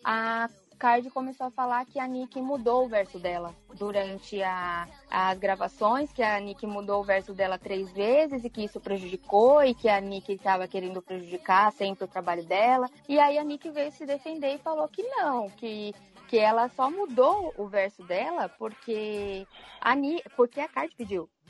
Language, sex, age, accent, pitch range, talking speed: Portuguese, female, 20-39, Brazilian, 195-255 Hz, 175 wpm